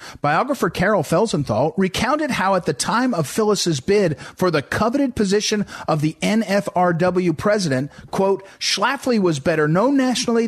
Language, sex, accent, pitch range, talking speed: English, male, American, 155-210 Hz, 140 wpm